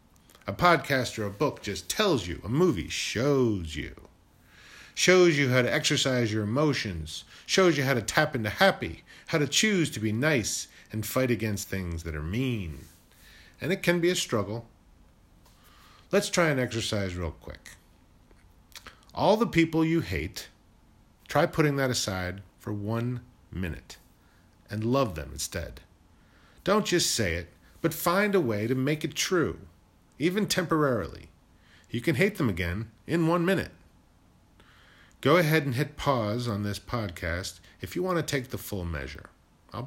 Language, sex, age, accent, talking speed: English, male, 40-59, American, 160 wpm